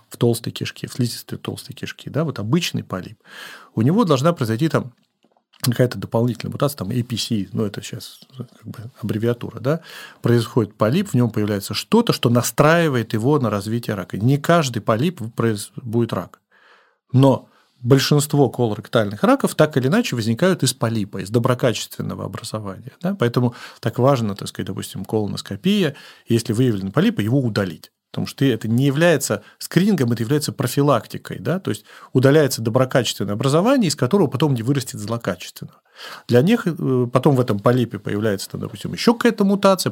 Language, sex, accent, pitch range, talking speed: Russian, male, native, 115-150 Hz, 160 wpm